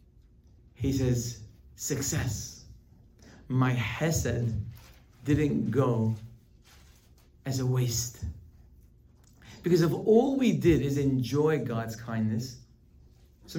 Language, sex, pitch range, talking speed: English, male, 115-150 Hz, 90 wpm